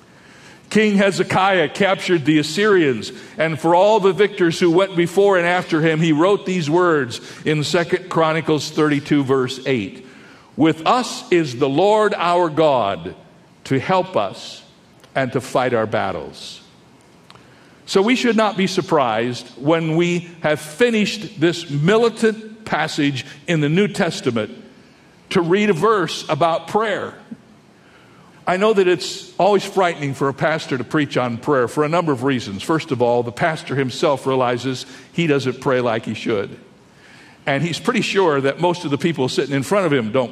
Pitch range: 140-185 Hz